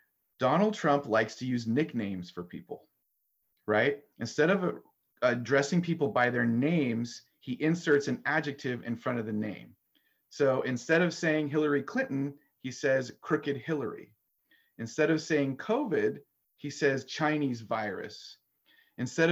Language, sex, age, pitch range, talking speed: English, male, 30-49, 120-160 Hz, 135 wpm